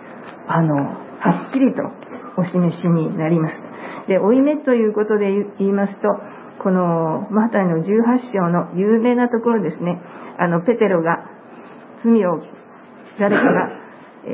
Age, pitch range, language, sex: 50-69, 180-225 Hz, Japanese, female